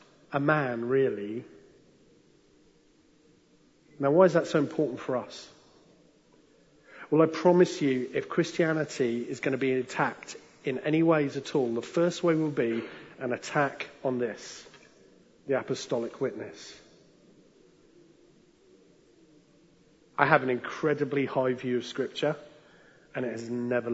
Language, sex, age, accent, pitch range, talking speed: English, male, 40-59, British, 130-160 Hz, 130 wpm